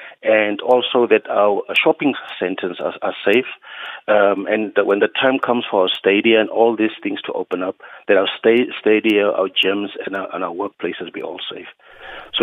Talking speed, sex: 200 wpm, male